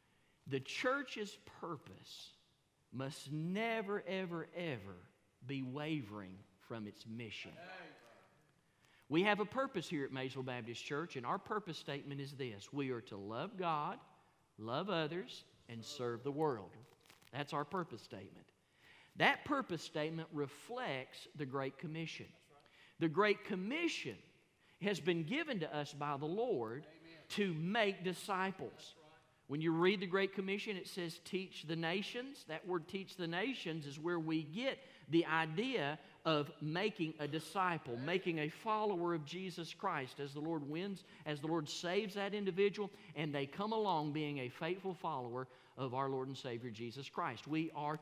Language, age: English, 40-59